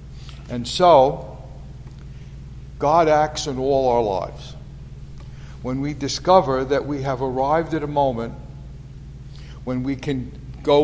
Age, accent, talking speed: 60-79, American, 120 wpm